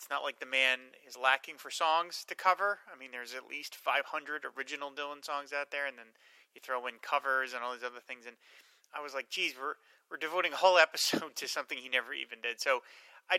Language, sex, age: English, male, 30-49